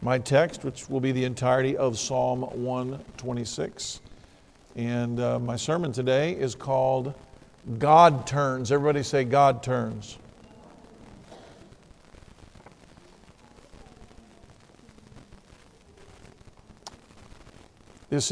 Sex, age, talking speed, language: male, 50-69, 80 wpm, English